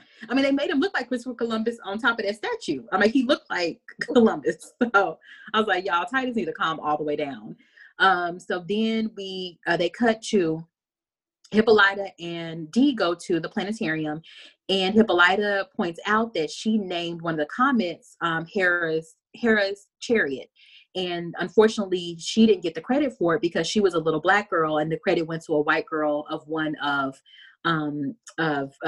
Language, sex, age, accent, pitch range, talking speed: English, female, 30-49, American, 160-215 Hz, 190 wpm